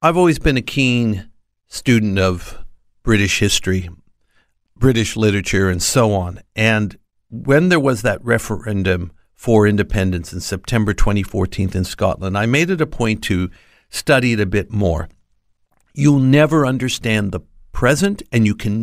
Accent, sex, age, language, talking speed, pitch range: American, male, 60-79, English, 145 wpm, 100-135 Hz